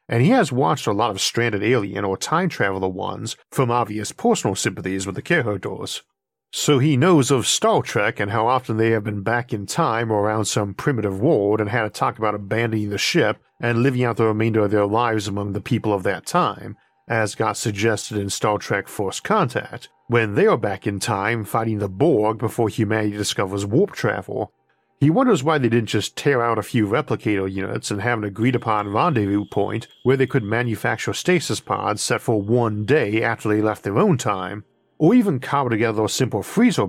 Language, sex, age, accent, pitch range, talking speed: English, male, 50-69, American, 105-125 Hz, 200 wpm